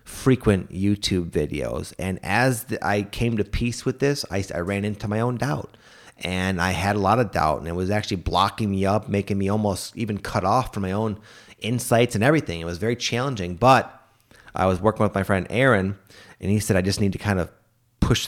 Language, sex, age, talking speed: English, male, 30-49, 220 wpm